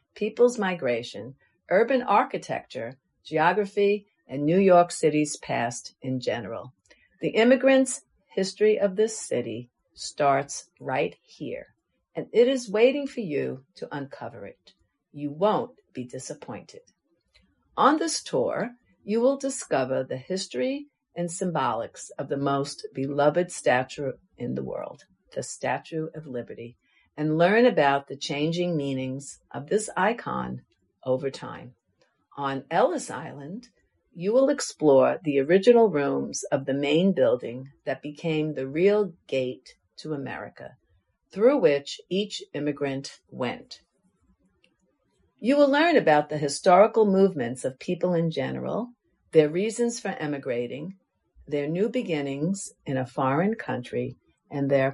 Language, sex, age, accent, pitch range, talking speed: English, female, 50-69, American, 135-205 Hz, 125 wpm